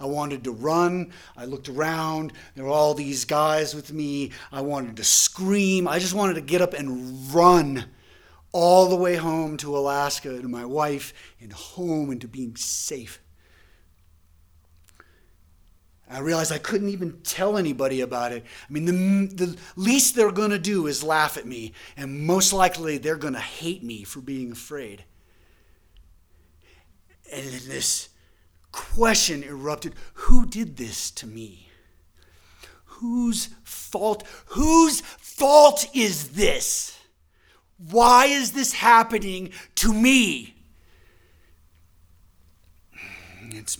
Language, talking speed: English, 130 wpm